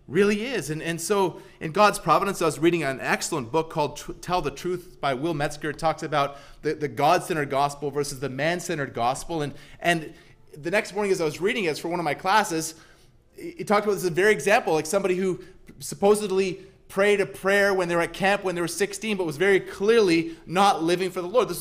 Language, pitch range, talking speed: English, 145-200 Hz, 230 wpm